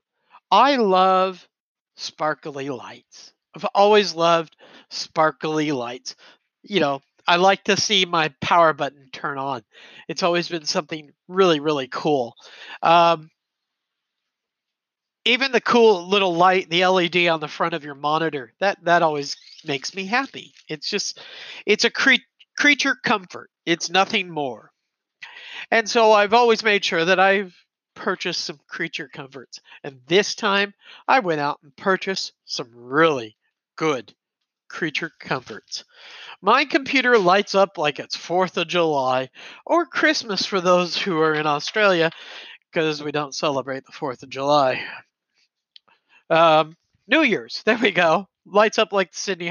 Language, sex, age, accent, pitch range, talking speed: English, male, 50-69, American, 155-220 Hz, 140 wpm